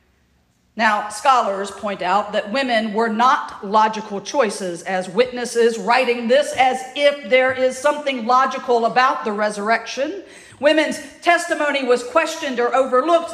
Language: English